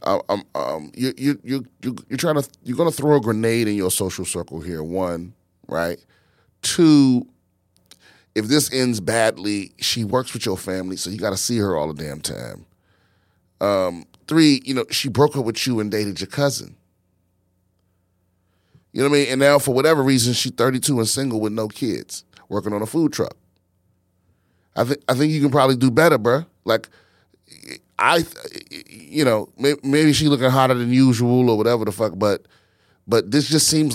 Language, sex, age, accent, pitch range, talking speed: English, male, 30-49, American, 90-130 Hz, 180 wpm